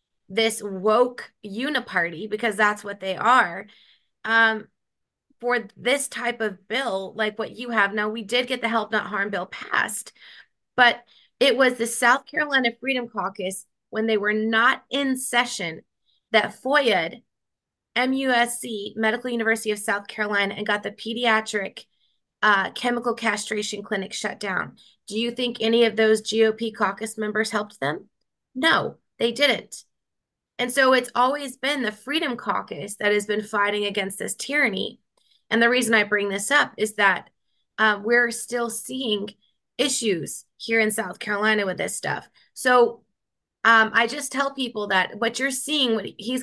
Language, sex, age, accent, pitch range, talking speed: English, female, 20-39, American, 205-245 Hz, 160 wpm